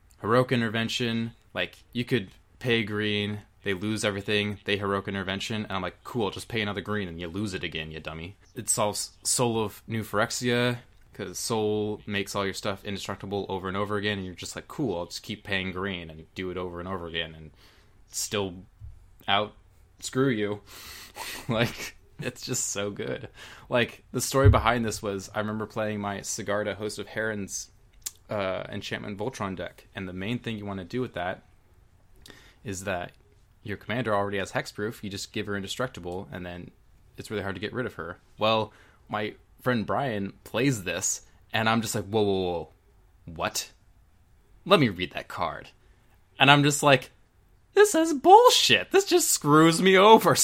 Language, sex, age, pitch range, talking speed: English, male, 20-39, 95-120 Hz, 185 wpm